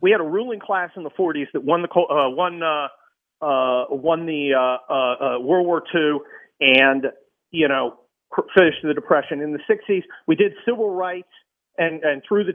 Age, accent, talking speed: 40-59, American, 185 wpm